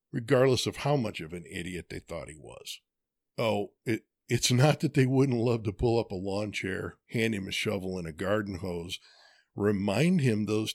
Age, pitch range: 50-69, 95-135 Hz